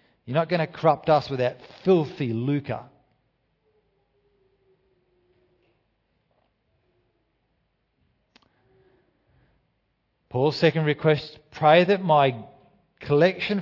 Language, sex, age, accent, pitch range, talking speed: English, male, 40-59, Australian, 125-170 Hz, 75 wpm